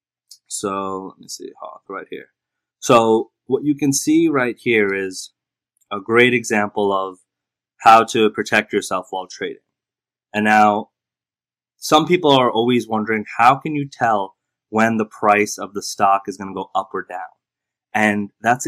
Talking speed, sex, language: 160 wpm, male, English